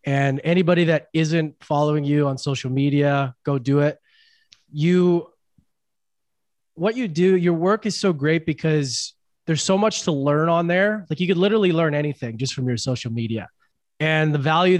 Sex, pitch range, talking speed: male, 145-180 Hz, 175 wpm